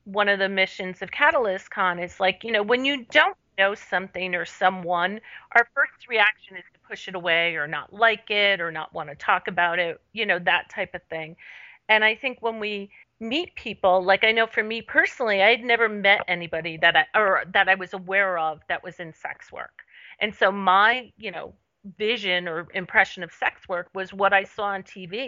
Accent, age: American, 40-59